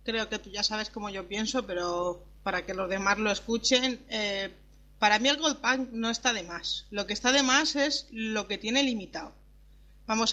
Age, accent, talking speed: 30-49, Spanish, 210 wpm